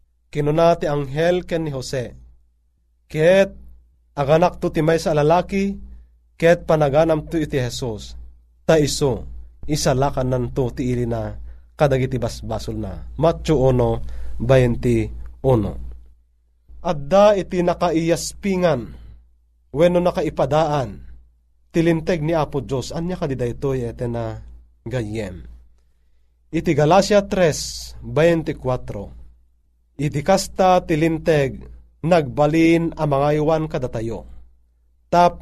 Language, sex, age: Filipino, male, 30-49